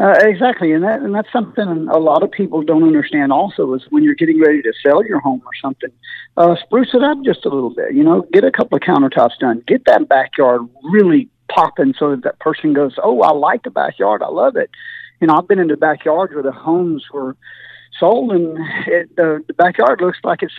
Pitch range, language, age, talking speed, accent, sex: 155-240 Hz, English, 50-69, 230 wpm, American, male